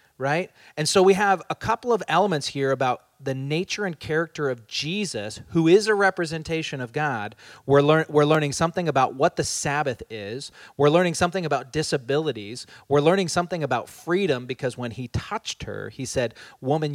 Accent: American